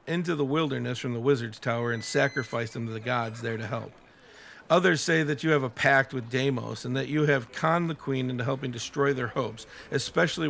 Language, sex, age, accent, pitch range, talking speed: English, male, 50-69, American, 125-155 Hz, 215 wpm